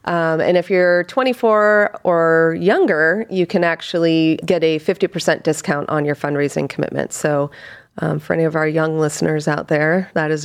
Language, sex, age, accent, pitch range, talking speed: English, female, 30-49, American, 155-175 Hz, 170 wpm